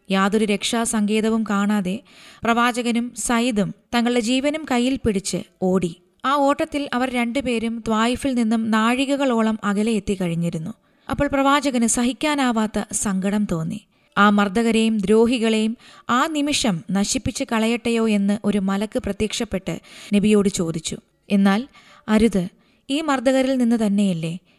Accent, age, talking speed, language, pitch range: native, 20-39, 105 wpm, Malayalam, 200-245 Hz